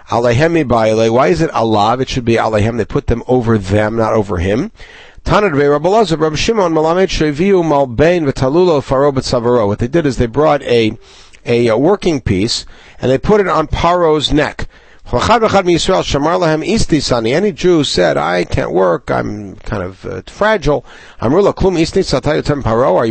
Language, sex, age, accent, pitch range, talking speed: English, male, 60-79, American, 120-175 Hz, 120 wpm